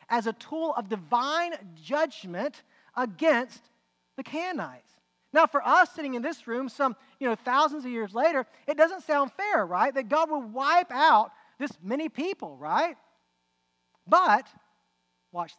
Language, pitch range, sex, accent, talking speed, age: English, 210-305 Hz, male, American, 150 wpm, 40-59